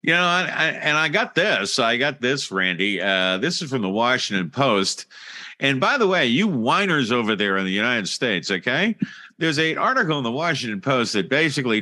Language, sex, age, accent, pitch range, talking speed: English, male, 50-69, American, 120-205 Hz, 200 wpm